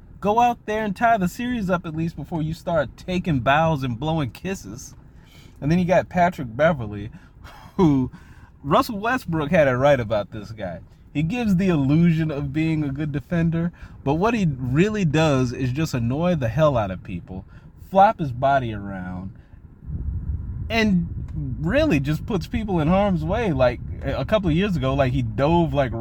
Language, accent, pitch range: English, American, 130-185 Hz